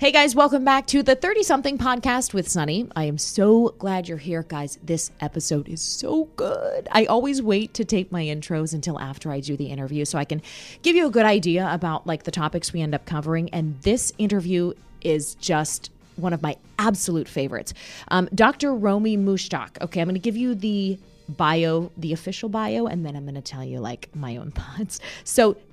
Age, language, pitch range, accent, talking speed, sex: 20-39, English, 150-210 Hz, American, 210 wpm, female